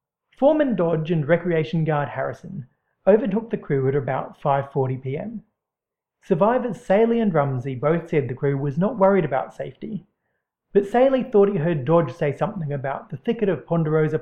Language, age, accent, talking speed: English, 40-59, Australian, 160 wpm